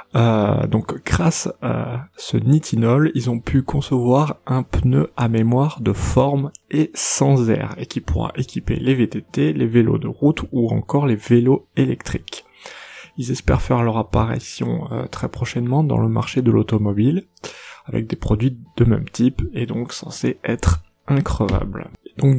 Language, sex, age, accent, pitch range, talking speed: French, male, 20-39, French, 115-145 Hz, 160 wpm